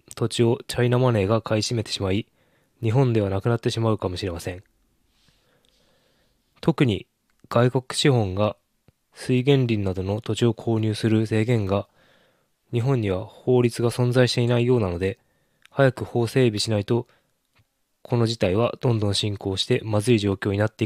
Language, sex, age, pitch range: Japanese, male, 20-39, 105-125 Hz